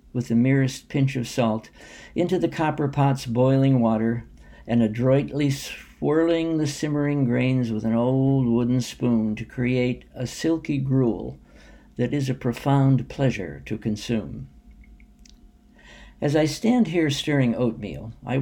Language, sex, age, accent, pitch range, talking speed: English, male, 60-79, American, 115-140 Hz, 135 wpm